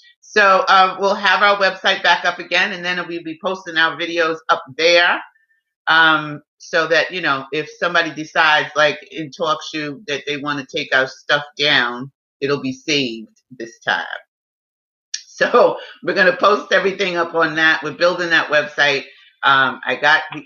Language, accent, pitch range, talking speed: English, American, 150-200 Hz, 175 wpm